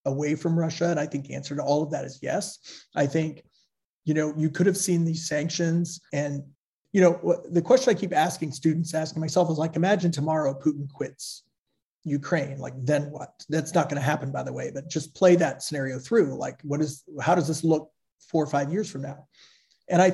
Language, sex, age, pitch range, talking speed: English, male, 30-49, 140-170 Hz, 220 wpm